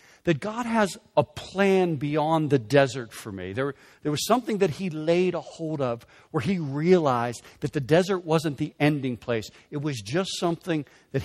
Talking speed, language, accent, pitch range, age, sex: 185 wpm, English, American, 115-160 Hz, 60-79, male